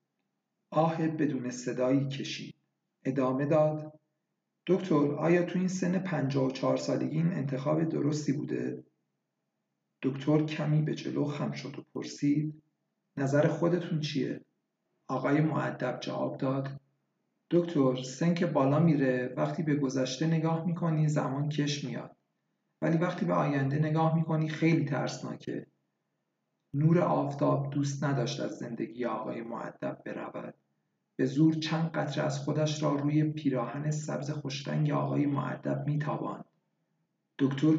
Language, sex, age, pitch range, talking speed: Persian, male, 50-69, 140-160 Hz, 125 wpm